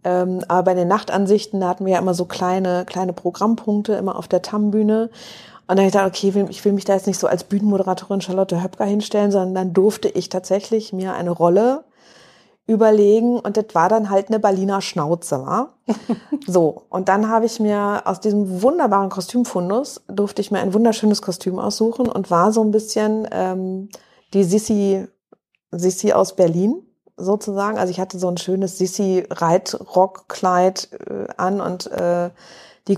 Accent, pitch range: German, 185-210 Hz